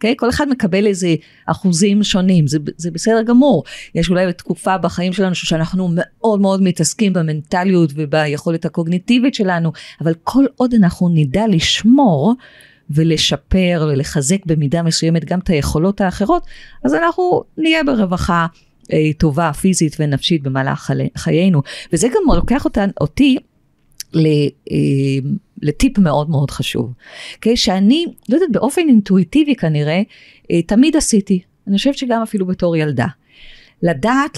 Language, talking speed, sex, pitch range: Hebrew, 130 wpm, female, 160-230 Hz